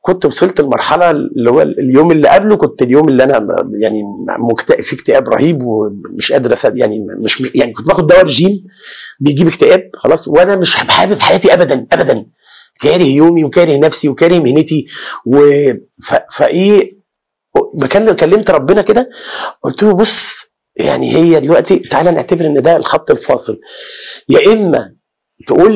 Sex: male